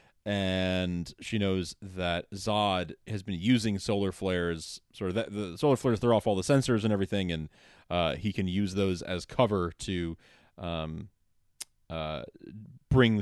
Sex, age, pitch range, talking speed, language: male, 30-49, 90-120 Hz, 155 wpm, English